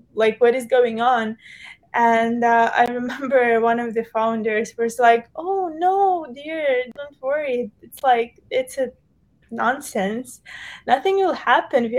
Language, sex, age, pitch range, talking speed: English, female, 20-39, 215-250 Hz, 145 wpm